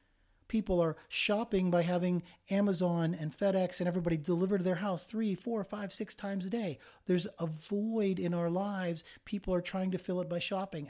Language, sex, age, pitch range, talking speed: English, male, 40-59, 135-180 Hz, 195 wpm